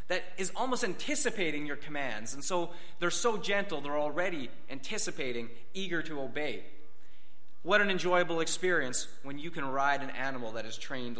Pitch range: 145-195 Hz